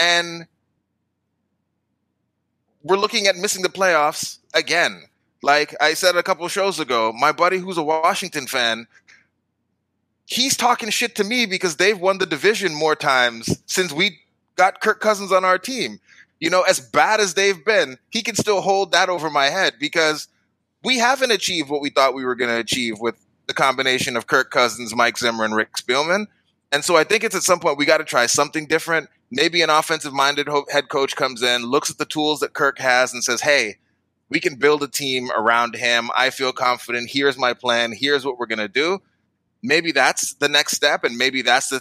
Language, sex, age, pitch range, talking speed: English, male, 20-39, 120-180 Hz, 200 wpm